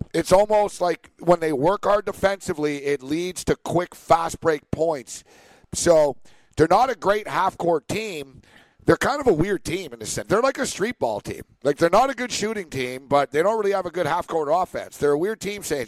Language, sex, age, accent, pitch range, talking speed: English, male, 50-69, American, 145-185 Hz, 225 wpm